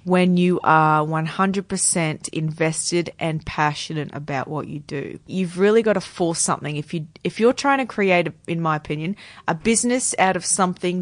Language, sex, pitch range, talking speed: English, female, 160-185 Hz, 190 wpm